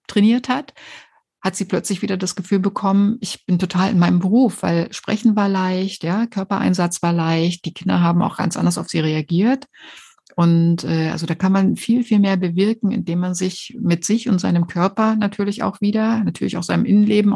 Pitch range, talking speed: 170-210 Hz, 195 wpm